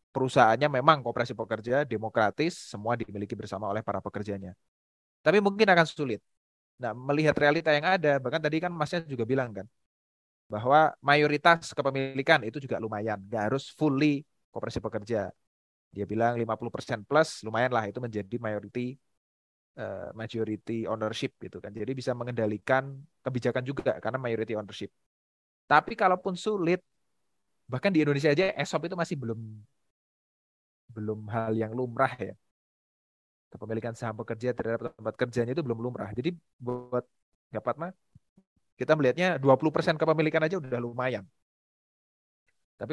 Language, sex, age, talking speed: Indonesian, male, 20-39, 135 wpm